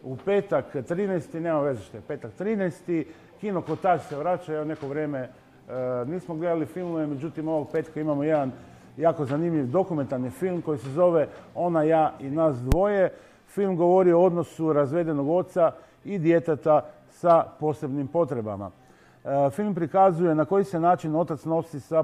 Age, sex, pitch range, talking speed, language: 50-69, male, 135-170 Hz, 160 wpm, Croatian